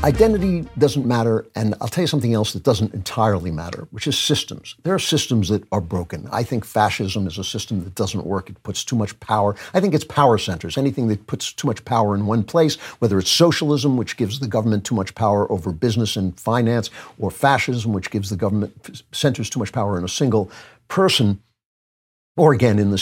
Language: English